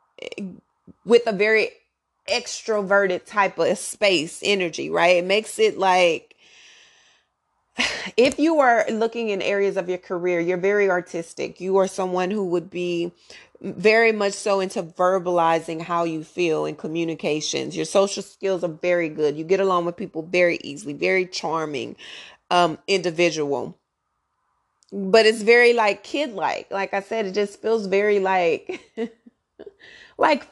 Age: 30-49